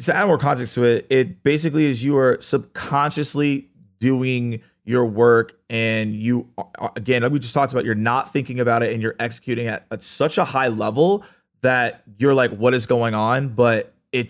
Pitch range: 120-160 Hz